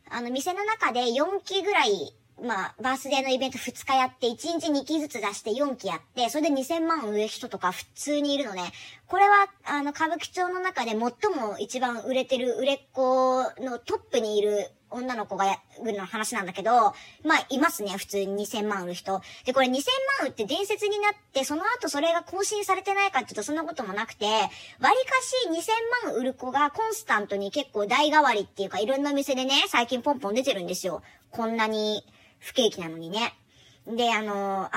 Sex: male